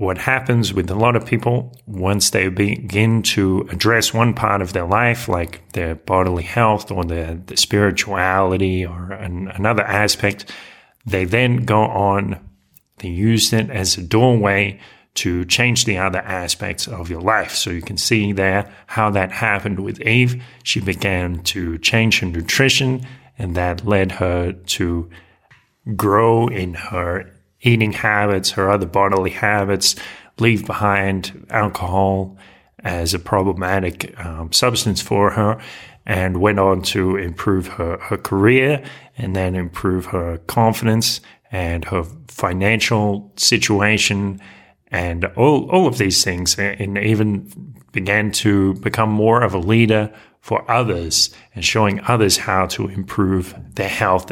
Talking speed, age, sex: 140 wpm, 30-49, male